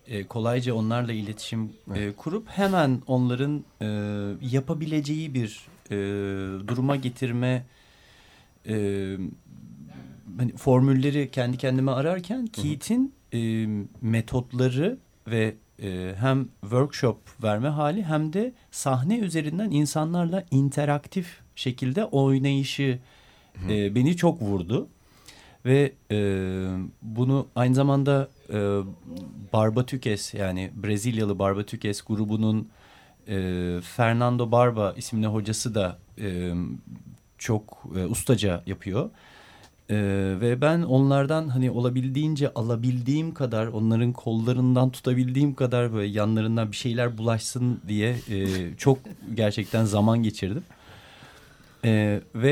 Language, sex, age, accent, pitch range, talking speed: Turkish, male, 40-59, native, 105-135 Hz, 95 wpm